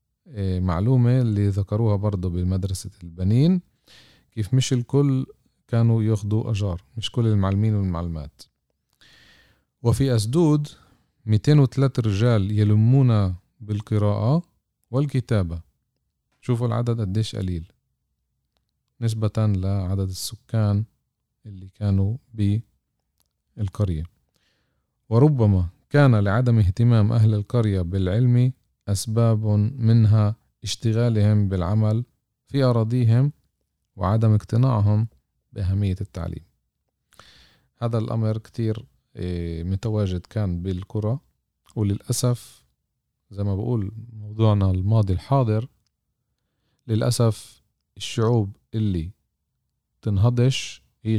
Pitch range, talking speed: 95-115 Hz, 80 wpm